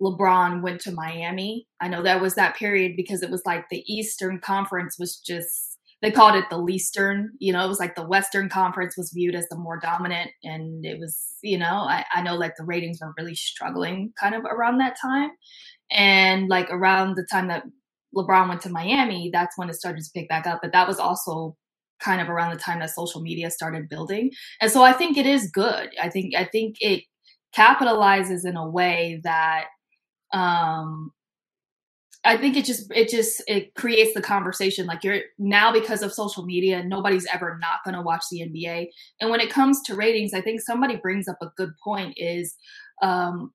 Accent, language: American, English